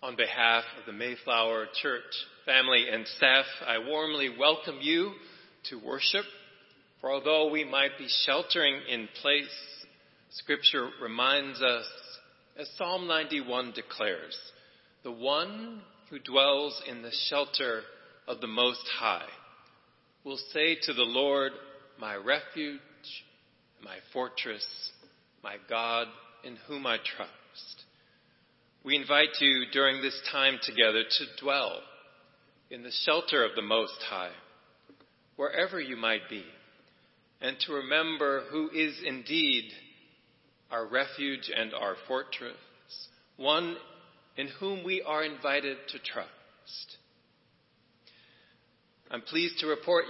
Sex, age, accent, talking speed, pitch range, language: male, 40-59, American, 120 wpm, 125-165 Hz, English